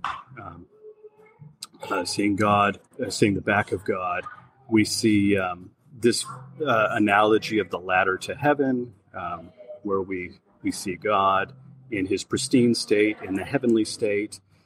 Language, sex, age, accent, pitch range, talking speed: English, male, 30-49, American, 100-130 Hz, 145 wpm